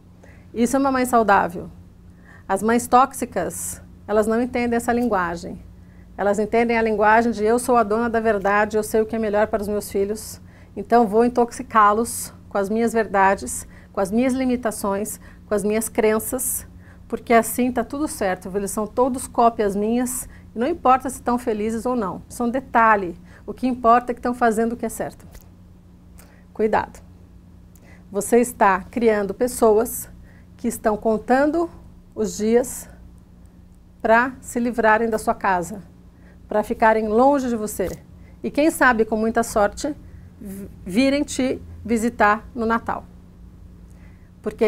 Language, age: Portuguese, 50-69